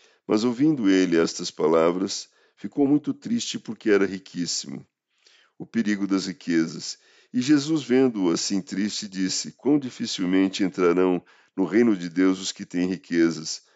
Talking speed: 140 wpm